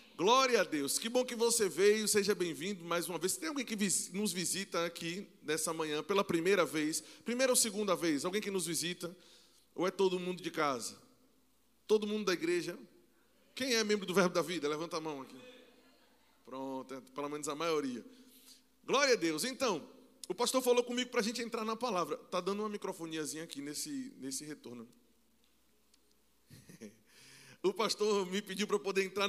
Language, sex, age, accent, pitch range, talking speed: Portuguese, male, 20-39, Brazilian, 160-225 Hz, 180 wpm